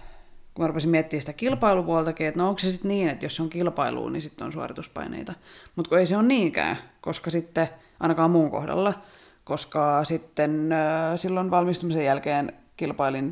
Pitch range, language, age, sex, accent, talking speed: 150-185 Hz, Finnish, 20-39, female, native, 160 wpm